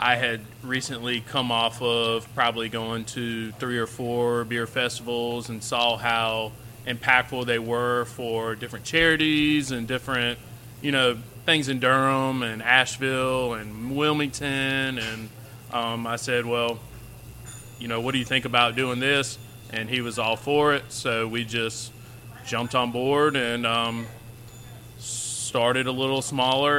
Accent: American